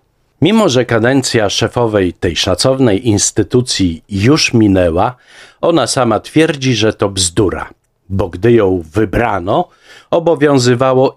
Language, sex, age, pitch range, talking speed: Polish, male, 50-69, 95-125 Hz, 105 wpm